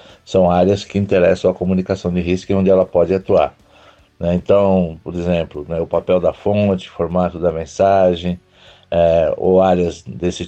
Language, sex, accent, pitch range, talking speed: Portuguese, male, Brazilian, 90-100 Hz, 150 wpm